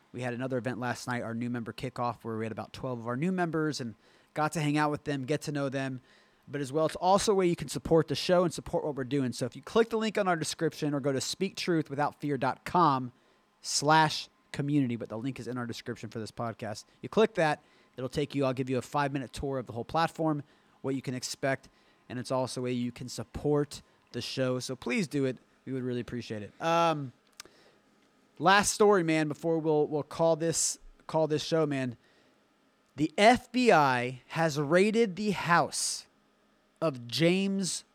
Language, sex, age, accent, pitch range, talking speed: English, male, 30-49, American, 130-180 Hz, 205 wpm